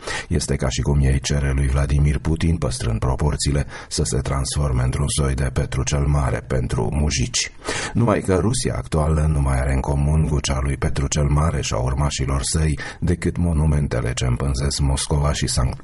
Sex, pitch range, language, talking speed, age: male, 65-75 Hz, Romanian, 180 wpm, 40-59